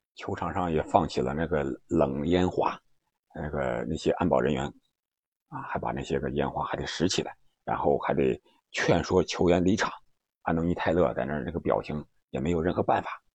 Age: 50-69